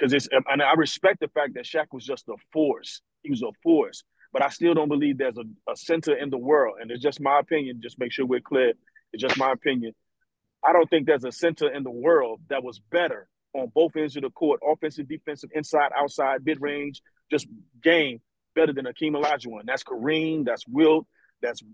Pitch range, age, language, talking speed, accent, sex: 130-160 Hz, 40-59, English, 205 wpm, American, male